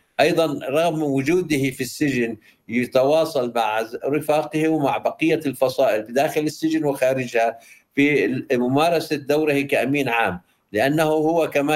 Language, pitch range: Arabic, 130-150 Hz